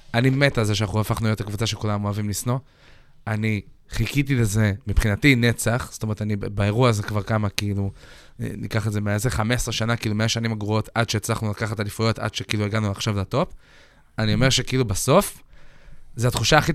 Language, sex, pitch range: Hebrew, male, 110-135 Hz